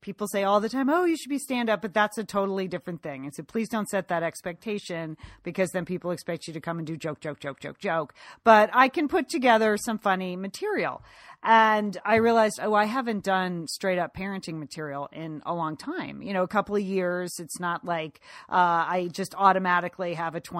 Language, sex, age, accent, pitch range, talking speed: English, female, 40-59, American, 175-220 Hz, 215 wpm